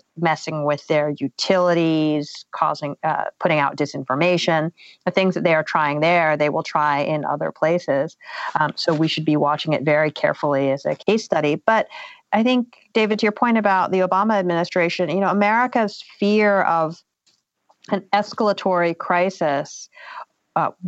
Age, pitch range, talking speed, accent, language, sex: 40-59, 155-190 Hz, 160 wpm, American, English, female